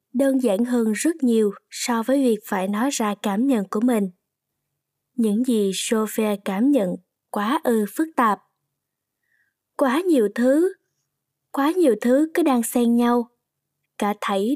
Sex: female